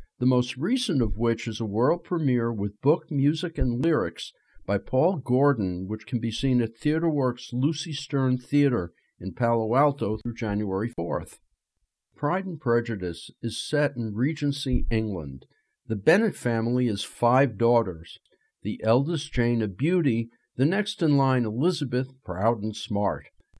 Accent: American